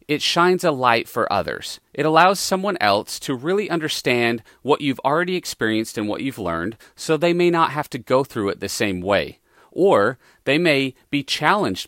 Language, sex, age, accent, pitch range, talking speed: English, male, 40-59, American, 115-170 Hz, 190 wpm